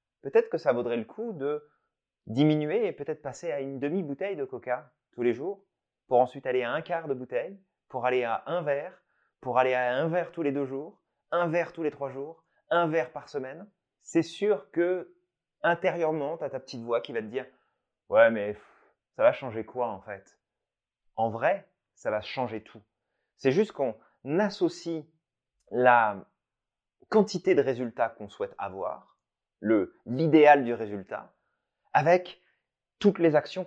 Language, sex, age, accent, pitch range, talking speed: French, male, 30-49, French, 125-165 Hz, 175 wpm